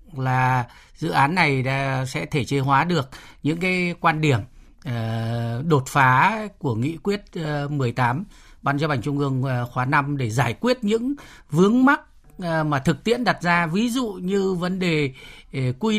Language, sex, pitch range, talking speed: Vietnamese, male, 135-180 Hz, 160 wpm